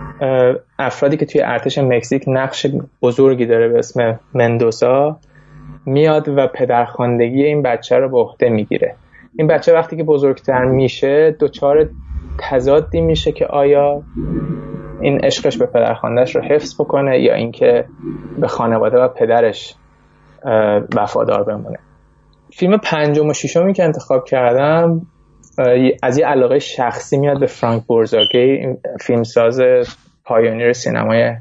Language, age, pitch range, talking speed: Persian, 20-39, 120-155 Hz, 125 wpm